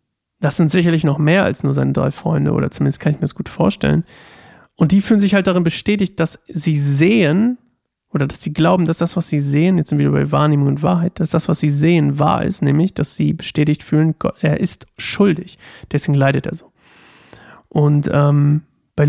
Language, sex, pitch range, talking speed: German, male, 150-180 Hz, 210 wpm